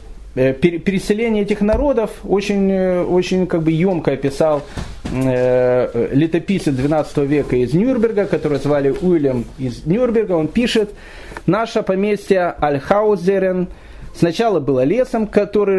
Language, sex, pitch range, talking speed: Russian, male, 145-195 Hz, 110 wpm